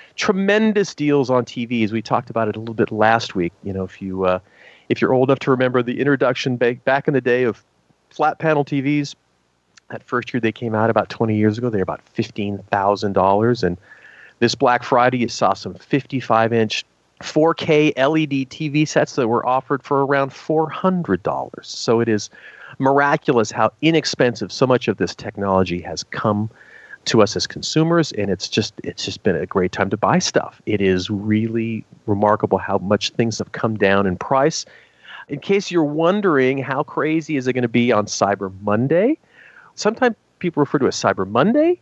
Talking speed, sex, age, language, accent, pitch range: 185 wpm, male, 40-59, English, American, 105-150 Hz